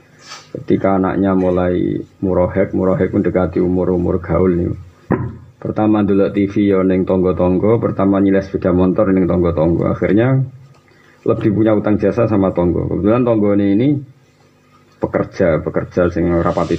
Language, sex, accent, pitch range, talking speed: Indonesian, male, native, 90-115 Hz, 130 wpm